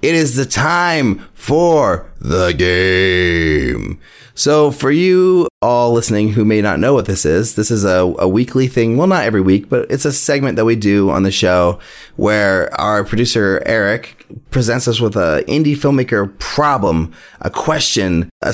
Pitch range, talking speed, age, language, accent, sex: 95-130 Hz, 170 wpm, 30-49, English, American, male